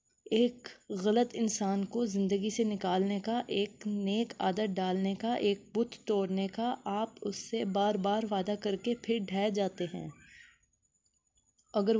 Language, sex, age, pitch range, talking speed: Urdu, female, 20-39, 195-220 Hz, 150 wpm